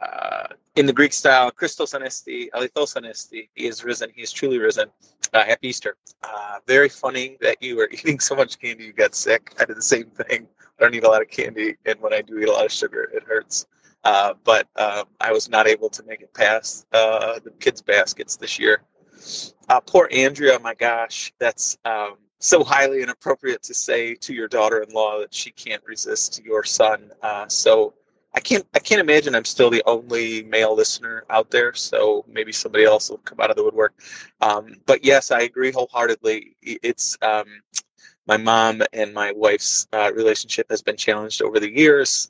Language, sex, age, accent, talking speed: English, male, 30-49, American, 195 wpm